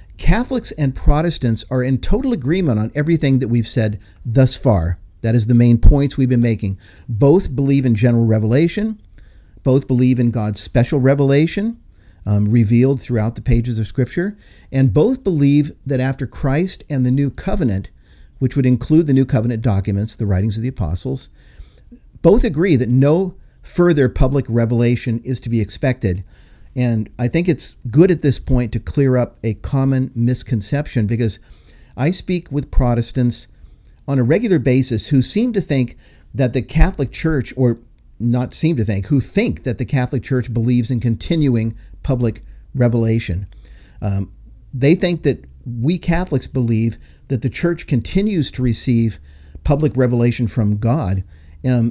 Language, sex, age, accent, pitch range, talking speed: English, male, 50-69, American, 115-140 Hz, 160 wpm